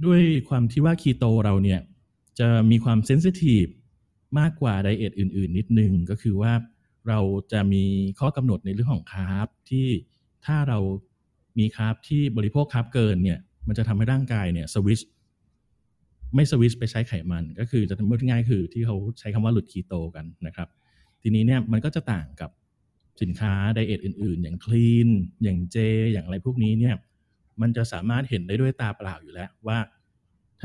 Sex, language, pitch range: male, Thai, 95-115 Hz